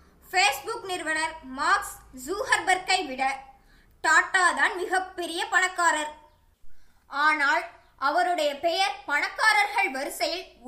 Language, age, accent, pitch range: Tamil, 20-39, native, 300-375 Hz